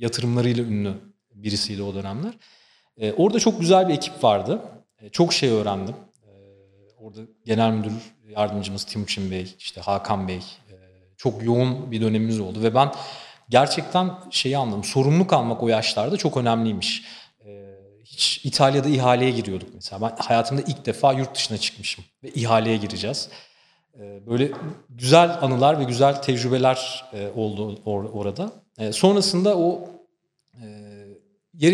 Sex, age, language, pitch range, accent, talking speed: male, 40-59, Turkish, 105-140 Hz, native, 140 wpm